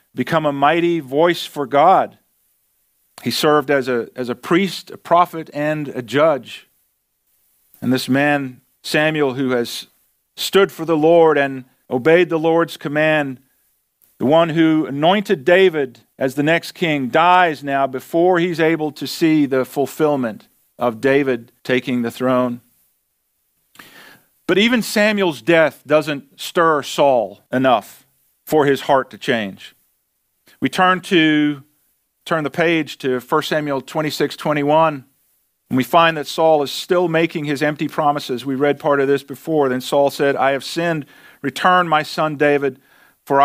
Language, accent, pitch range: English, American, 140-170 Hz